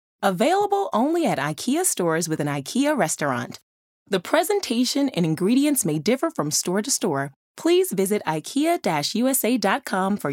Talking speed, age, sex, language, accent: 135 wpm, 20-39, female, English, American